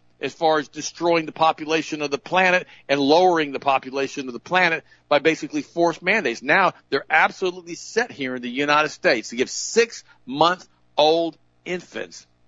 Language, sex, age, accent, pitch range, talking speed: English, male, 50-69, American, 120-165 Hz, 160 wpm